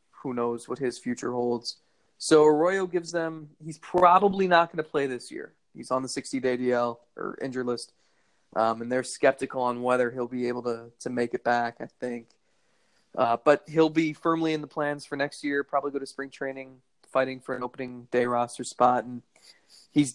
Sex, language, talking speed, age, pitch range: male, English, 200 wpm, 20-39, 125-155 Hz